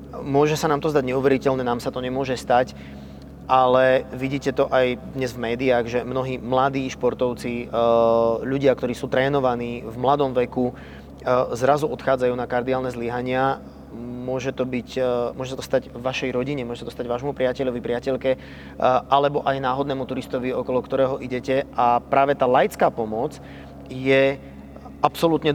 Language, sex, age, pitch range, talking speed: Slovak, male, 30-49, 120-135 Hz, 145 wpm